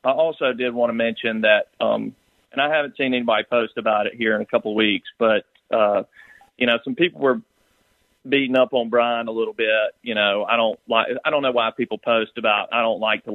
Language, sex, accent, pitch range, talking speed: English, male, American, 110-125 Hz, 235 wpm